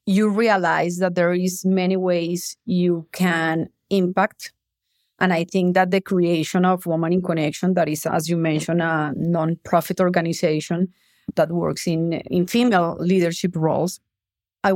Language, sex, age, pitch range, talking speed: English, female, 30-49, 180-210 Hz, 150 wpm